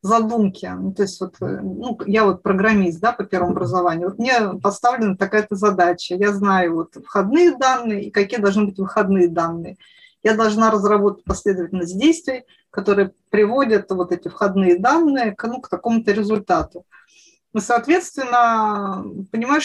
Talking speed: 145 wpm